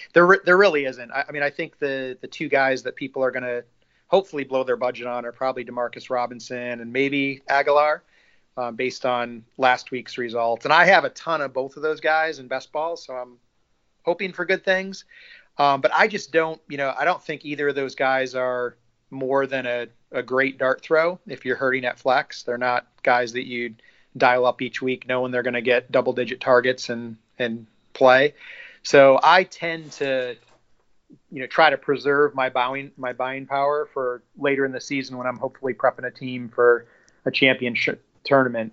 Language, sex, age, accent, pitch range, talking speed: English, male, 30-49, American, 120-140 Hz, 200 wpm